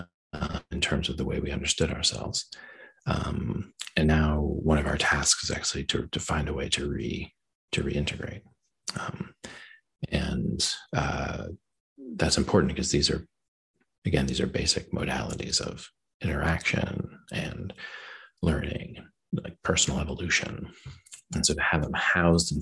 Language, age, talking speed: English, 40-59, 145 wpm